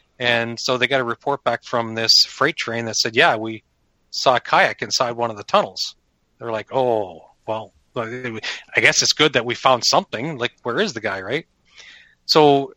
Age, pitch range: 30-49, 115-135 Hz